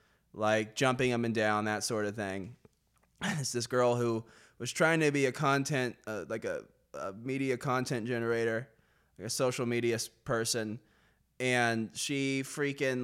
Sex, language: male, English